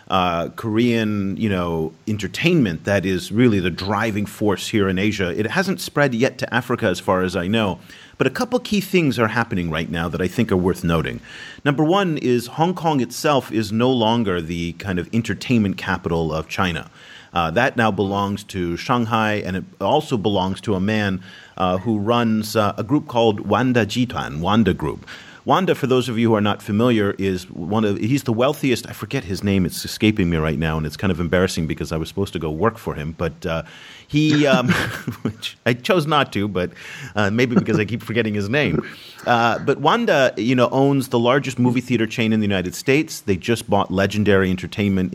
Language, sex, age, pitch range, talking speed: English, male, 40-59, 95-120 Hz, 210 wpm